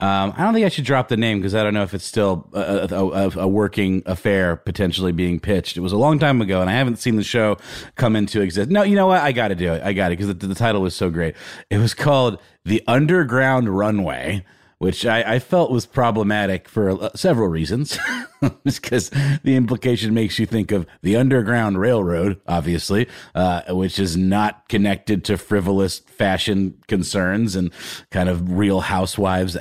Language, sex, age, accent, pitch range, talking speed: English, male, 30-49, American, 95-130 Hz, 200 wpm